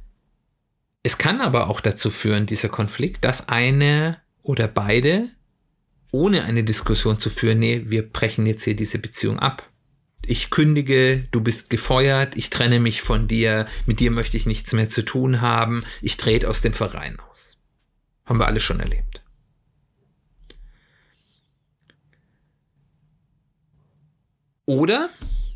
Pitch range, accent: 110-140 Hz, German